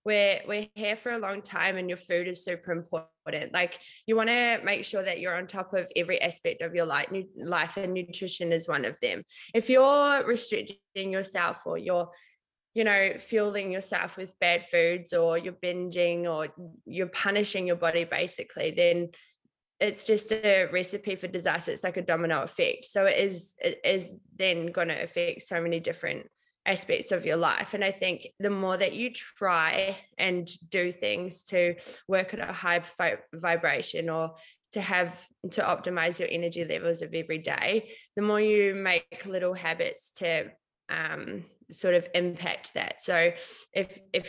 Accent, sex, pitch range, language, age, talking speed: Australian, female, 170-200 Hz, English, 20-39, 175 wpm